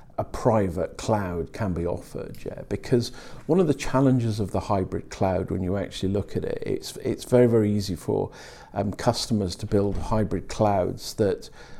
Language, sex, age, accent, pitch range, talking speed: English, male, 50-69, British, 95-120 Hz, 180 wpm